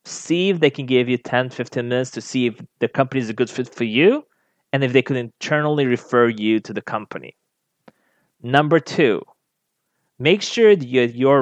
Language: English